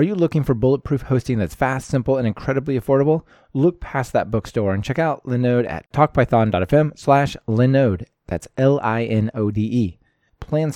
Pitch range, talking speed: 105-140 Hz, 150 wpm